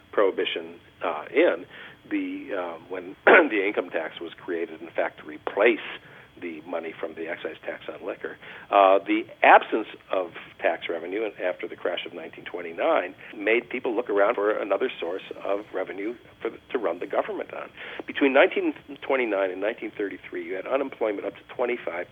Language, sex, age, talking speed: English, male, 50-69, 155 wpm